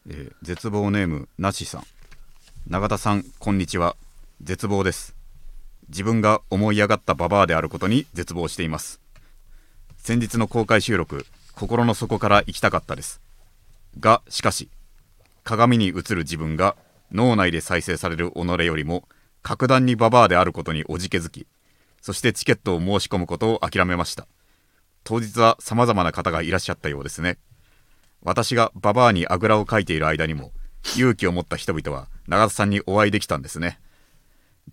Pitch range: 85-110 Hz